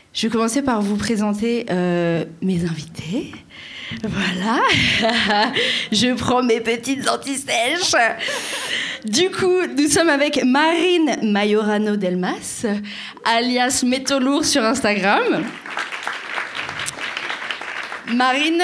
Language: French